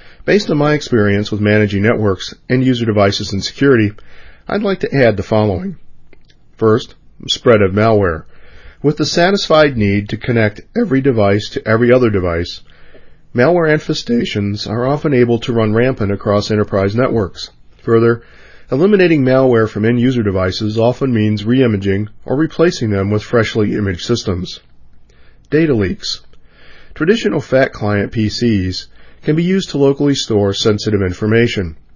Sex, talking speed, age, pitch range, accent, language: male, 140 wpm, 40-59, 100-130 Hz, American, English